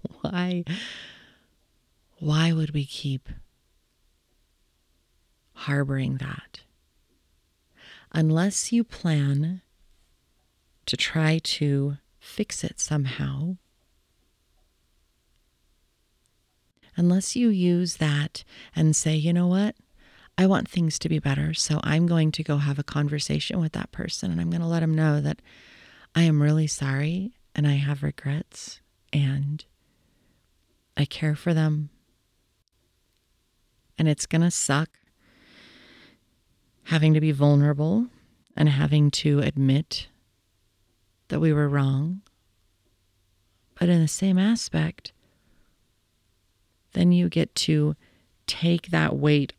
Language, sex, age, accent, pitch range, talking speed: English, female, 30-49, American, 95-160 Hz, 110 wpm